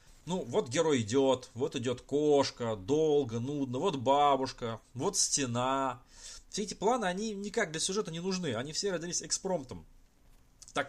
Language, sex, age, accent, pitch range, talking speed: Russian, male, 20-39, native, 130-200 Hz, 150 wpm